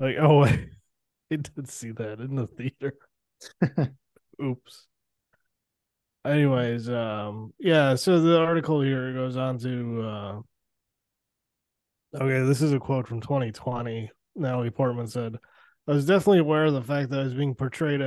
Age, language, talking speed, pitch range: 20-39, English, 145 wpm, 125-150 Hz